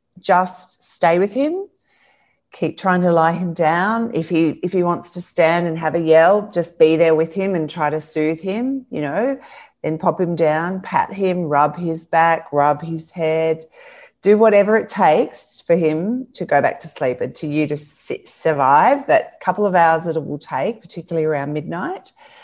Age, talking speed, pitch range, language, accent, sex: 30-49, 195 wpm, 160-200 Hz, English, Australian, female